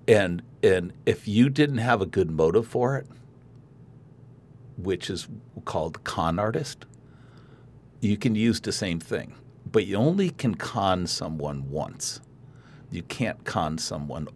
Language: English